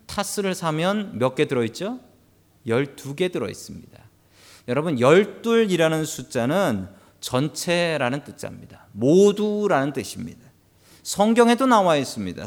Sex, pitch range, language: male, 115-195 Hz, Korean